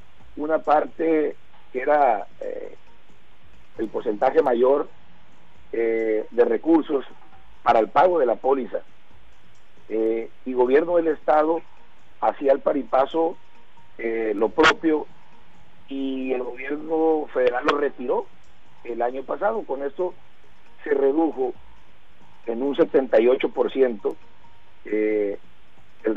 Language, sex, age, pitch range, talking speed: Spanish, male, 50-69, 125-185 Hz, 105 wpm